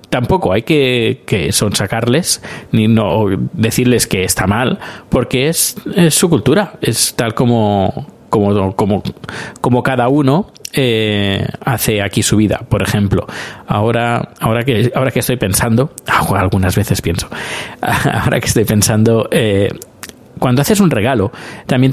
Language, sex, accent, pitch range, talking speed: Spanish, male, Spanish, 110-140 Hz, 140 wpm